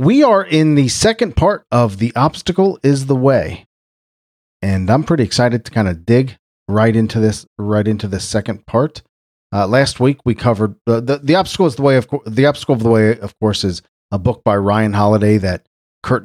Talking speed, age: 210 wpm, 40-59